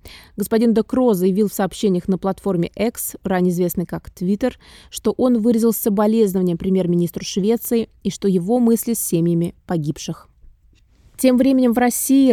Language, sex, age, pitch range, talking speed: Russian, female, 20-39, 185-230 Hz, 140 wpm